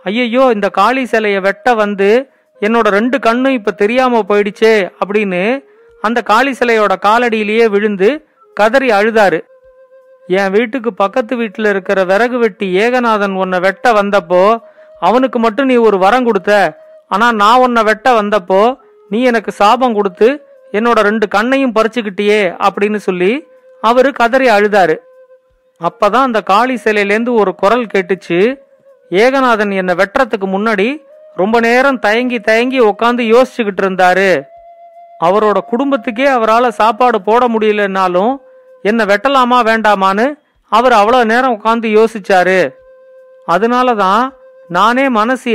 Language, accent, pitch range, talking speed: Tamil, native, 205-260 Hz, 120 wpm